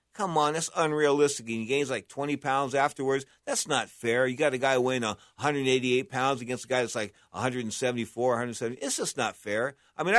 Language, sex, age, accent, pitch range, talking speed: English, male, 50-69, American, 120-150 Hz, 220 wpm